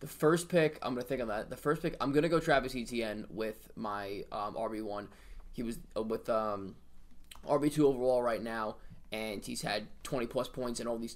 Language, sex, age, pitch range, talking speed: English, male, 20-39, 110-130 Hz, 200 wpm